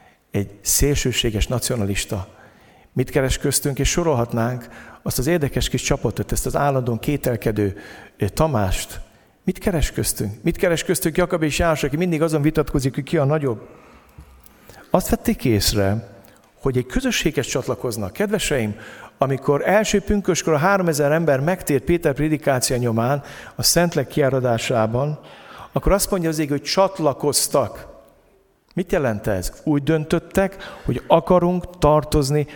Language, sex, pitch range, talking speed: Hungarian, male, 130-180 Hz, 125 wpm